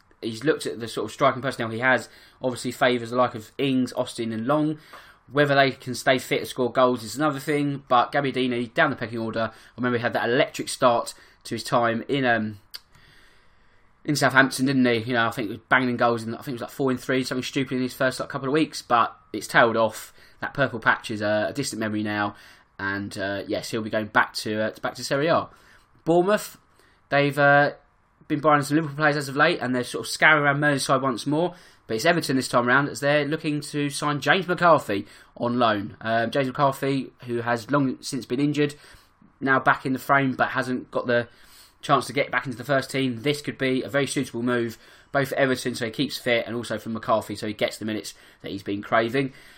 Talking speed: 230 wpm